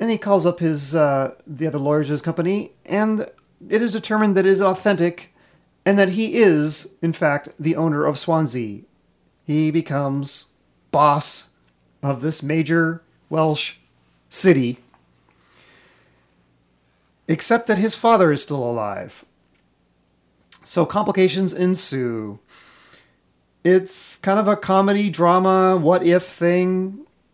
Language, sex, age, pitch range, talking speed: English, male, 40-59, 135-185 Hz, 125 wpm